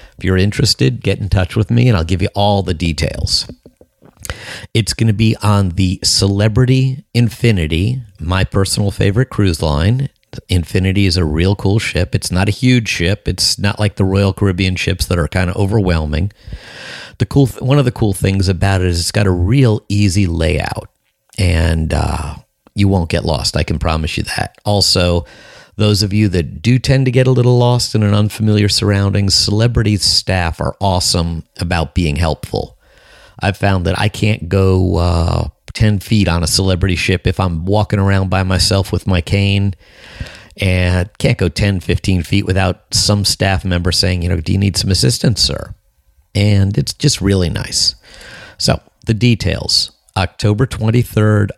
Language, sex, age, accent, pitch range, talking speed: English, male, 50-69, American, 90-105 Hz, 180 wpm